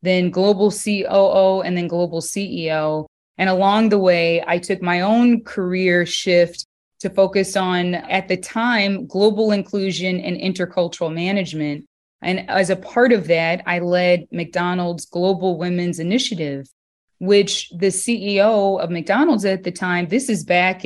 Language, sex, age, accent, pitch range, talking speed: English, female, 20-39, American, 170-205 Hz, 145 wpm